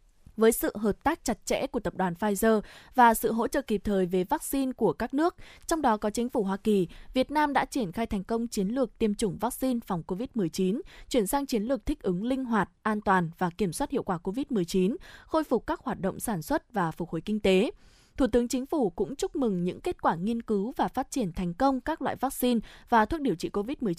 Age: 20-39